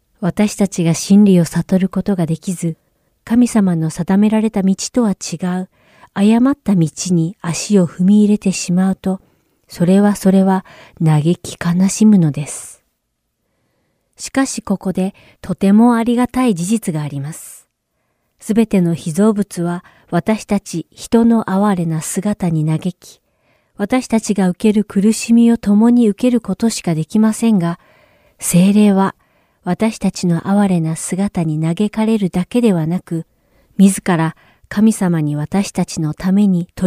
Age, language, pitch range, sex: 40-59, Japanese, 175-210 Hz, female